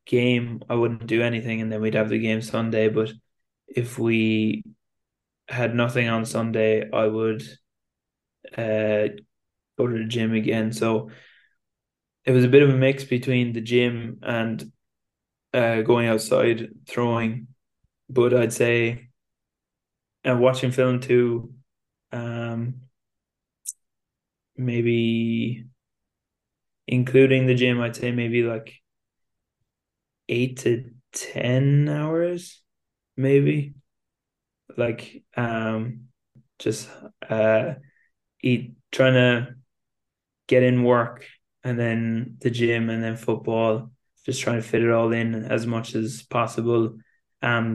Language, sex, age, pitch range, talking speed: Portuguese, male, 10-29, 110-125 Hz, 115 wpm